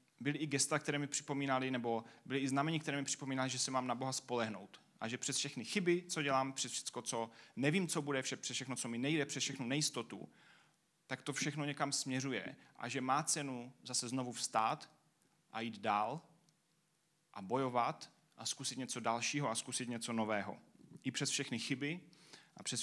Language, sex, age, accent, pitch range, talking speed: Czech, male, 30-49, native, 130-160 Hz, 185 wpm